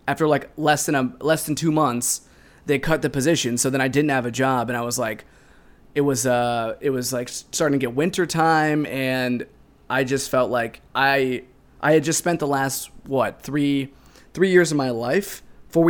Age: 20-39